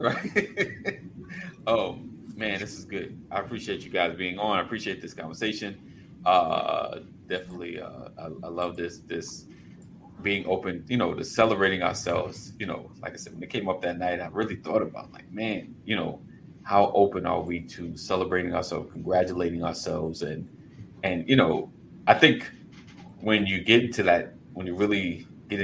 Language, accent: English, American